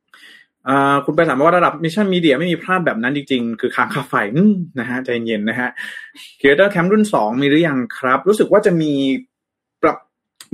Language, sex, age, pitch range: Thai, male, 20-39, 125-170 Hz